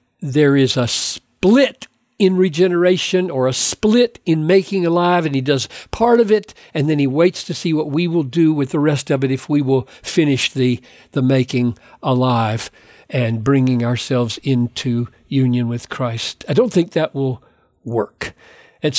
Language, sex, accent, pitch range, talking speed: English, male, American, 135-185 Hz, 175 wpm